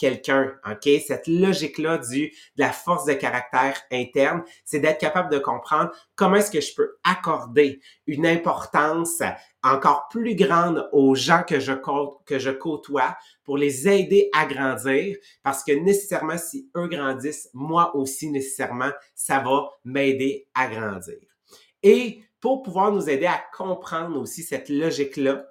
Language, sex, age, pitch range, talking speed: English, male, 30-49, 135-170 Hz, 150 wpm